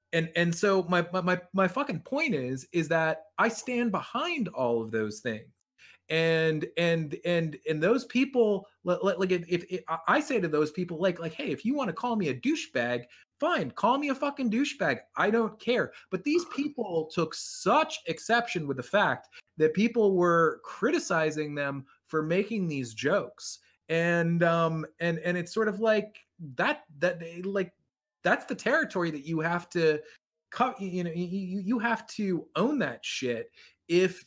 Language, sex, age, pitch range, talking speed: English, male, 30-49, 135-200 Hz, 175 wpm